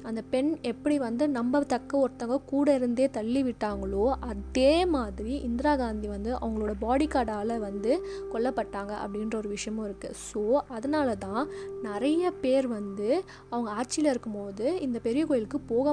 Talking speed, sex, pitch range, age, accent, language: 145 wpm, female, 220-275 Hz, 20-39, native, Tamil